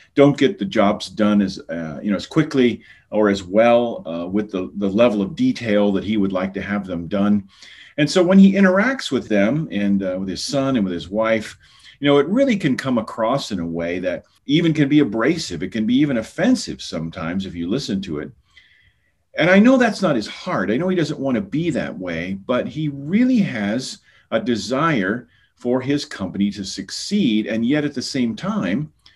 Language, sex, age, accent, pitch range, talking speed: English, male, 40-59, American, 100-155 Hz, 215 wpm